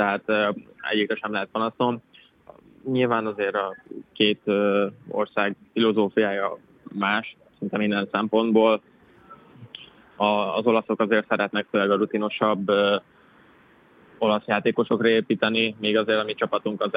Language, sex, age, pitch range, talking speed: Hungarian, male, 20-39, 105-110 Hz, 110 wpm